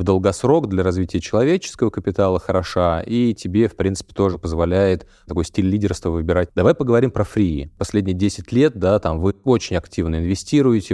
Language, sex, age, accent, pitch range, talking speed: Russian, male, 30-49, native, 85-105 Hz, 165 wpm